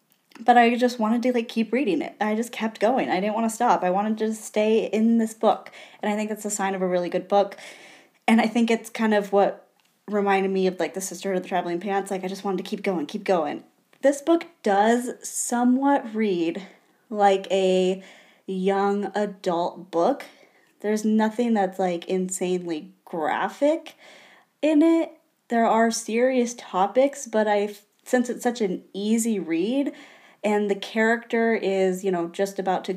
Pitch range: 185-230 Hz